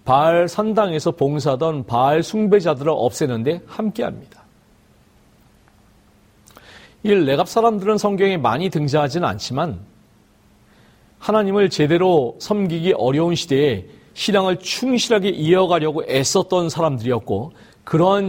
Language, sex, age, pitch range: Korean, male, 40-59, 115-180 Hz